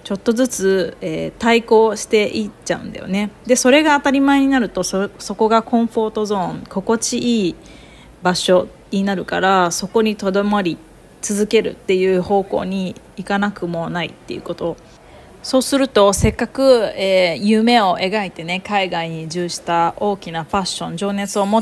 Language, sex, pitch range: Japanese, female, 185-225 Hz